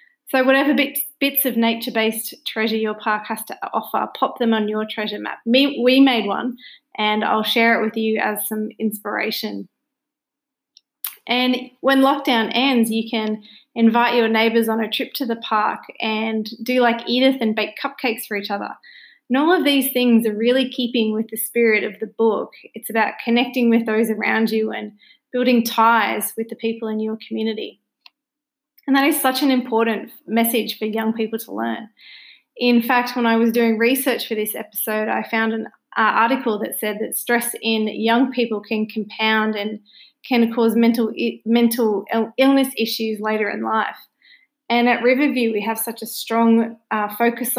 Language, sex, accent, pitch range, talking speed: English, female, Australian, 220-255 Hz, 180 wpm